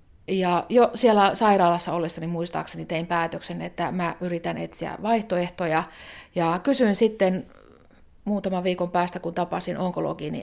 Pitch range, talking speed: 175-210 Hz, 125 wpm